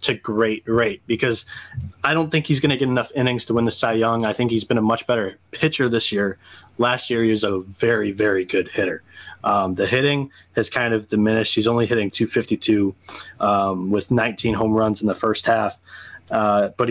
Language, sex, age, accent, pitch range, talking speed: English, male, 20-39, American, 105-125 Hz, 215 wpm